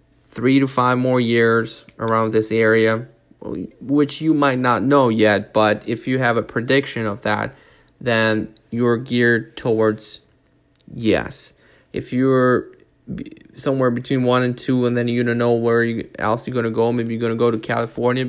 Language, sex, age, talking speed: English, male, 20-39, 170 wpm